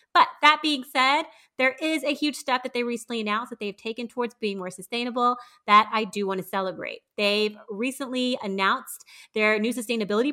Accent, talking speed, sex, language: American, 185 wpm, female, English